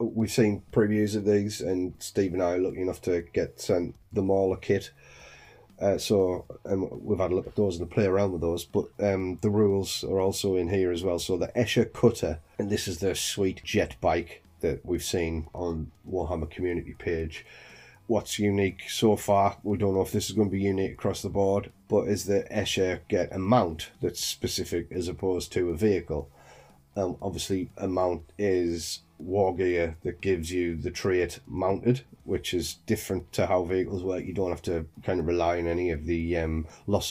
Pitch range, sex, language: 85-100 Hz, male, English